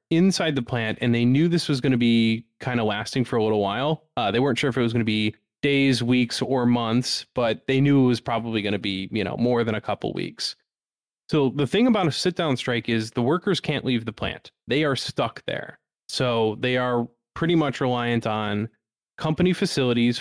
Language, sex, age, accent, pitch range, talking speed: English, male, 20-39, American, 115-140 Hz, 225 wpm